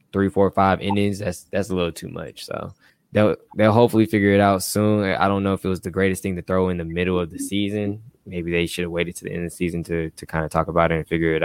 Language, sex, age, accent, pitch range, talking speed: English, male, 10-29, American, 85-105 Hz, 295 wpm